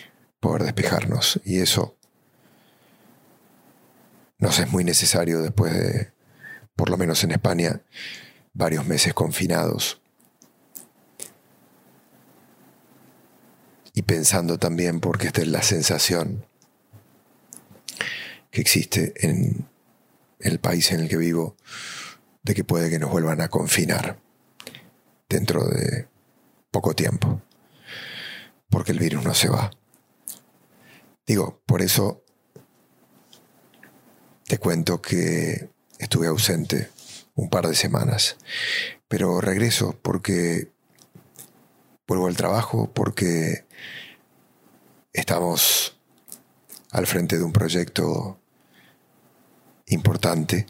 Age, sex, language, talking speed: 40-59, male, English, 95 wpm